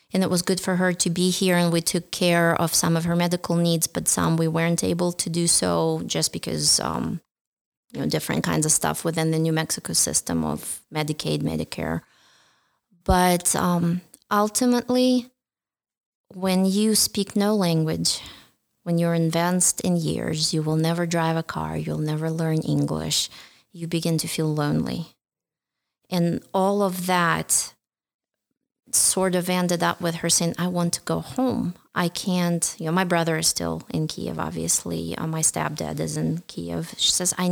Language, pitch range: English, 155-185 Hz